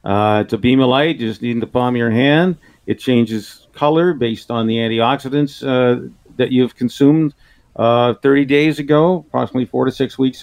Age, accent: 50-69, American